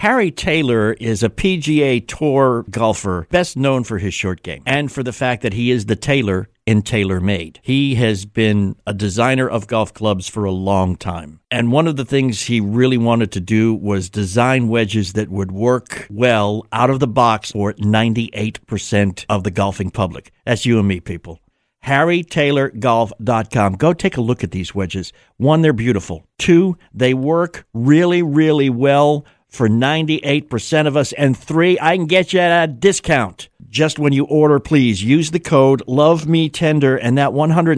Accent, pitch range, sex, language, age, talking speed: American, 105-140 Hz, male, English, 60-79, 180 wpm